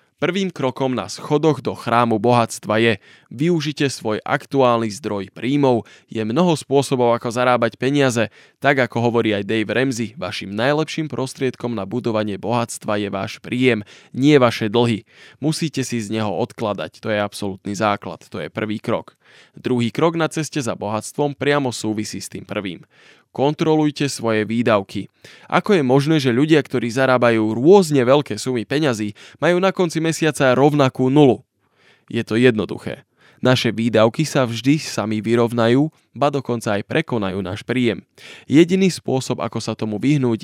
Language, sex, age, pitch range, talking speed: Slovak, male, 20-39, 110-140 Hz, 150 wpm